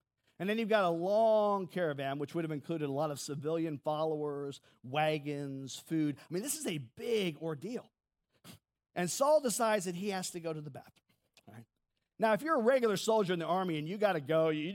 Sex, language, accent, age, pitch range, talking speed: male, English, American, 50-69, 155-225 Hz, 215 wpm